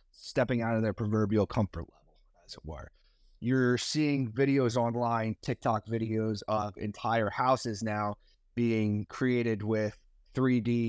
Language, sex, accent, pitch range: English, male, American, 105-130 Hz